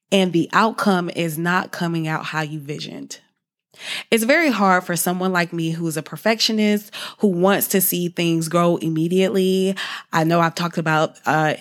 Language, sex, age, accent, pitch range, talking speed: English, female, 20-39, American, 165-200 Hz, 175 wpm